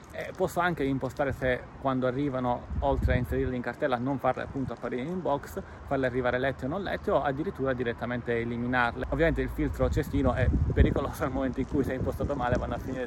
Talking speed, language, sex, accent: 205 wpm, Italian, male, native